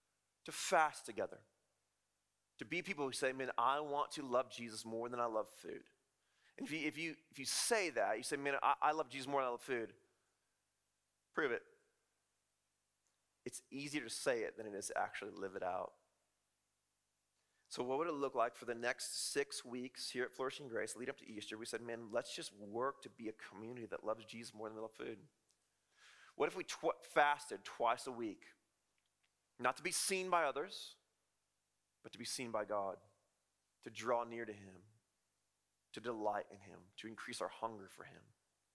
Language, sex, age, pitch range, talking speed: English, male, 30-49, 110-150 Hz, 195 wpm